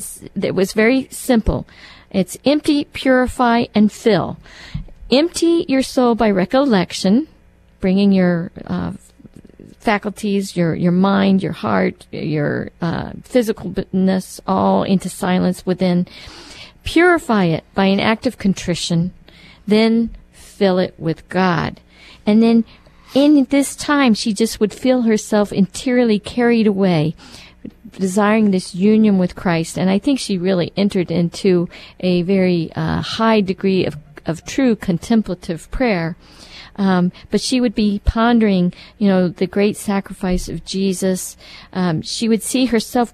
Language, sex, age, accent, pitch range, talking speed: English, female, 50-69, American, 180-225 Hz, 130 wpm